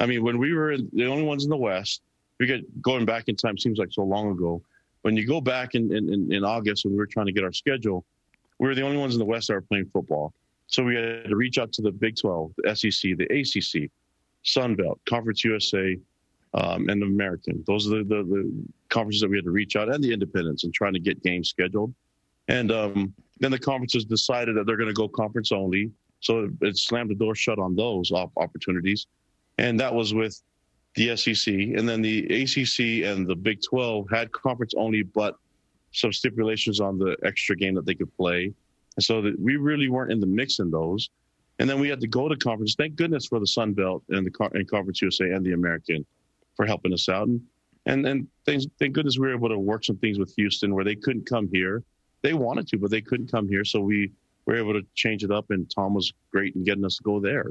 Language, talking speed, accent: English, 235 wpm, American